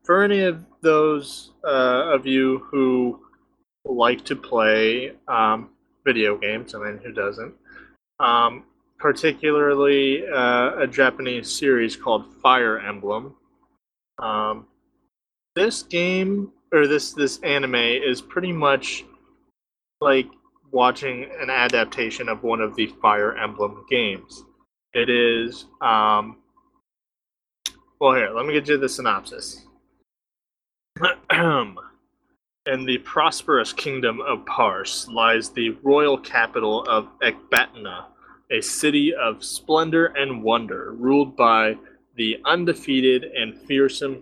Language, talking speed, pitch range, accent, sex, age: English, 115 wpm, 115-150 Hz, American, male, 20-39